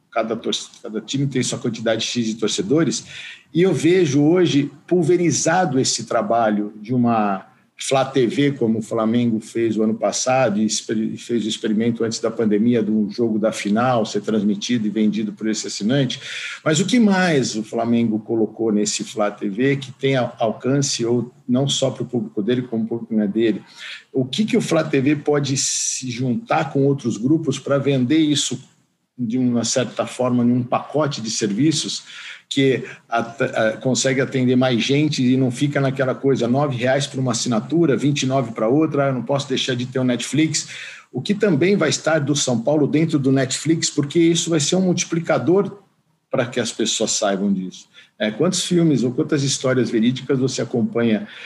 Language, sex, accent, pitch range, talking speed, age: Portuguese, male, Brazilian, 115-150 Hz, 180 wpm, 50-69